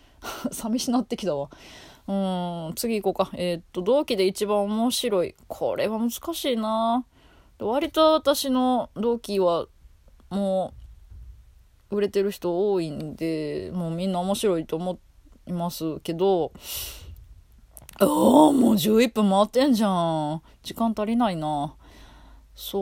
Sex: female